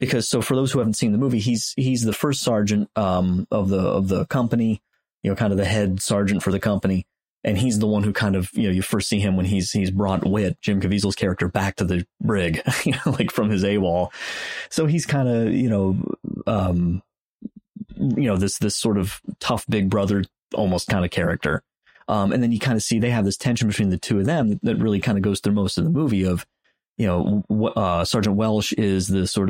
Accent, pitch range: American, 95-110 Hz